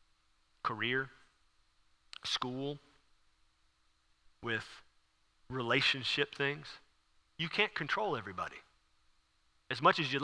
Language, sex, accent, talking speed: English, male, American, 75 wpm